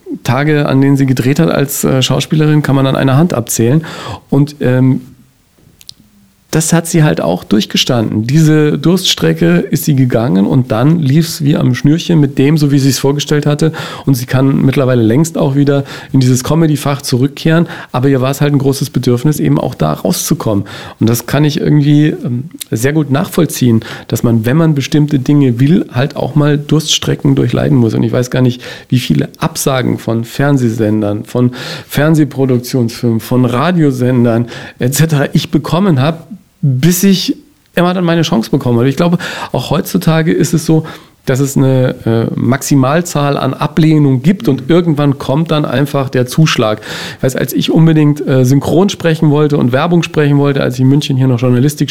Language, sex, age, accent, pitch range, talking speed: German, male, 40-59, German, 130-160 Hz, 180 wpm